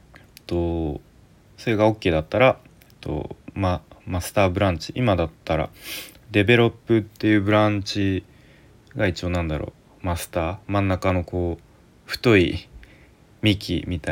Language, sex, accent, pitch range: Japanese, male, native, 85-110 Hz